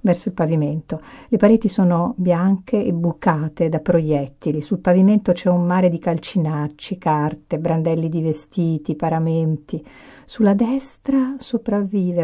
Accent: native